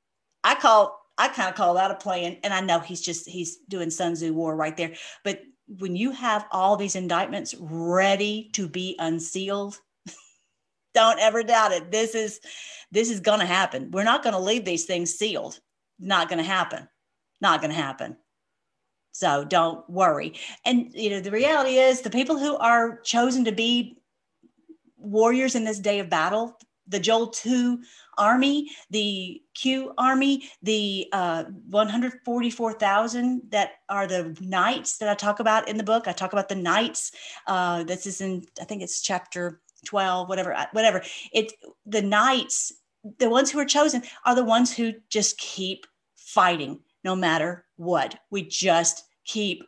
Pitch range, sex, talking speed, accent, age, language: 180-230 Hz, female, 165 wpm, American, 50-69, English